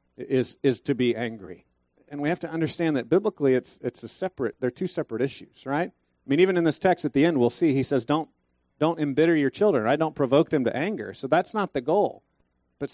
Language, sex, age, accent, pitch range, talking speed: English, male, 40-59, American, 120-145 Hz, 240 wpm